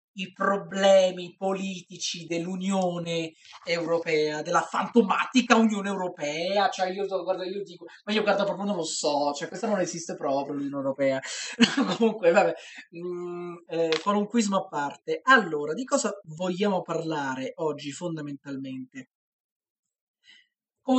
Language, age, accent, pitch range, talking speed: Italian, 30-49, native, 165-205 Hz, 130 wpm